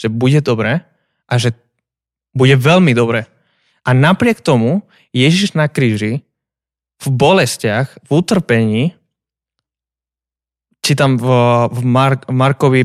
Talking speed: 105 wpm